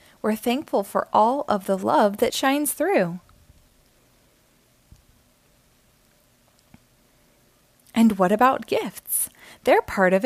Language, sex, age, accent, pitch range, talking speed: English, female, 20-39, American, 190-260 Hz, 100 wpm